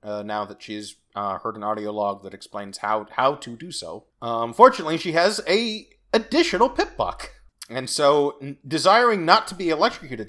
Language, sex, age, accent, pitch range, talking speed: English, male, 30-49, American, 110-150 Hz, 180 wpm